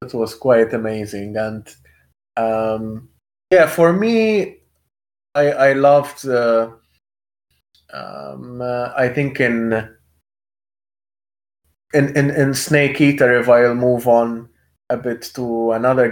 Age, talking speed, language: 20-39, 115 wpm, English